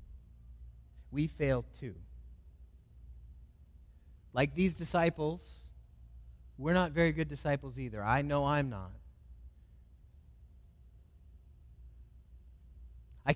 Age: 30-49